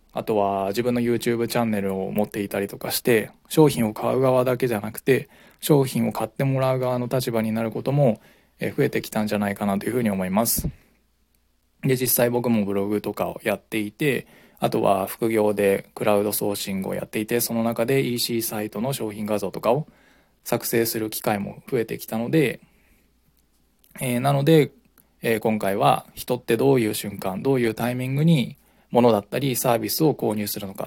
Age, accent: 20-39, native